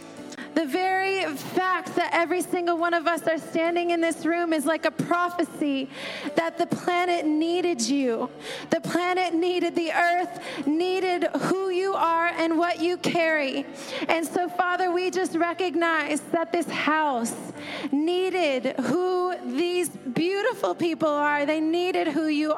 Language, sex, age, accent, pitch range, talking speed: English, female, 30-49, American, 305-350 Hz, 145 wpm